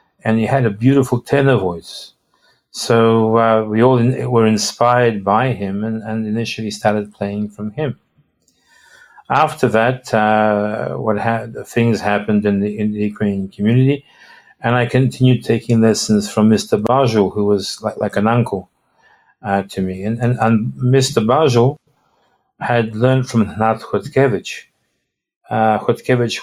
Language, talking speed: English, 150 wpm